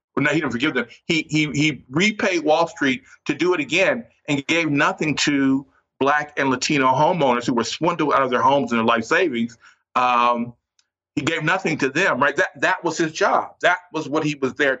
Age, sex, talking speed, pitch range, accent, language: 50-69, male, 215 wpm, 125-160 Hz, American, English